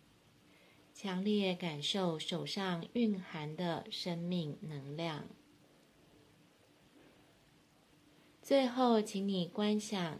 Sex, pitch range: female, 165-205 Hz